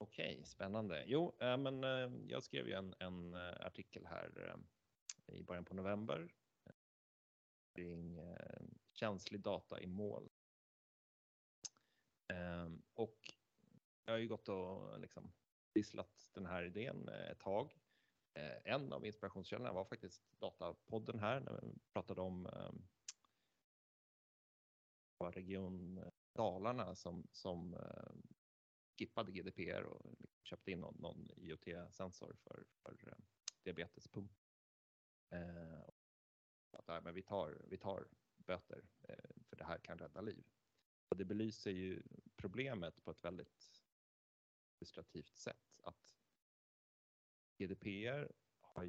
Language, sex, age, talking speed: Swedish, male, 30-49, 125 wpm